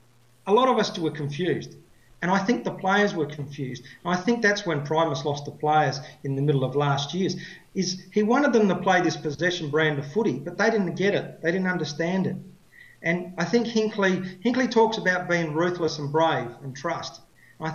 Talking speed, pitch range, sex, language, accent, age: 205 wpm, 150-190 Hz, male, English, Australian, 40-59